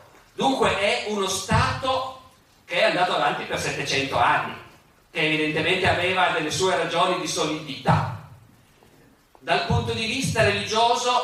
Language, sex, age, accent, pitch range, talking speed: Italian, male, 40-59, native, 150-190 Hz, 130 wpm